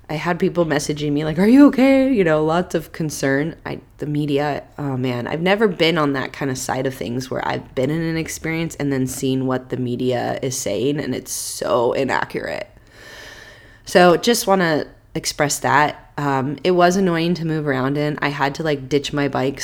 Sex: female